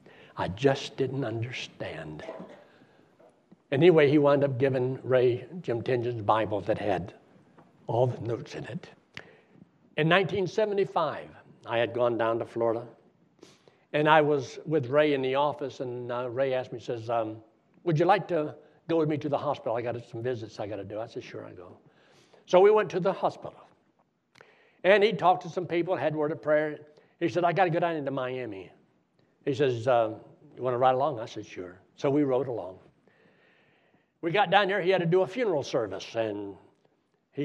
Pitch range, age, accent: 125-180 Hz, 60-79, American